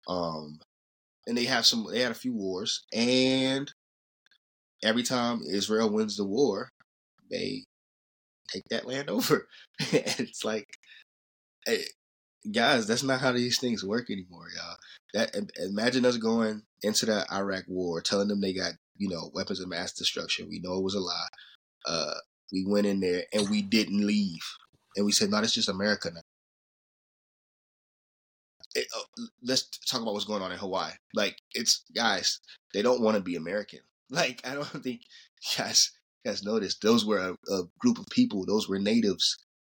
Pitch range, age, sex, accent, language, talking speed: 90-125 Hz, 20-39, male, American, English, 170 wpm